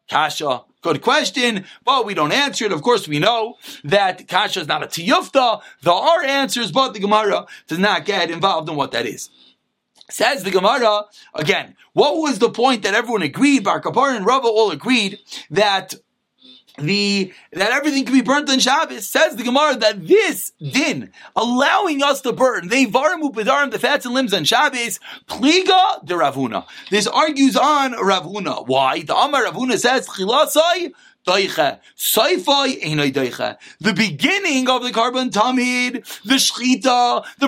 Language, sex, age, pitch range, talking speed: English, male, 30-49, 215-280 Hz, 155 wpm